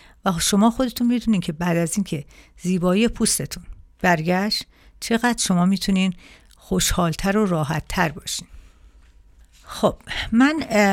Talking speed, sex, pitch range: 115 wpm, female, 170-210 Hz